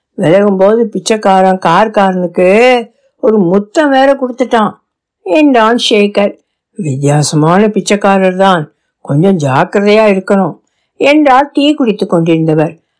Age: 60-79